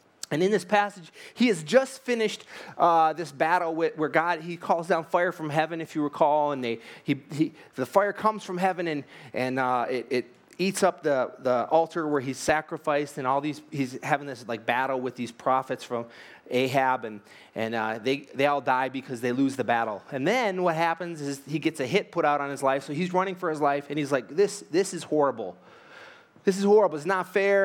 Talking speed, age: 225 wpm, 30-49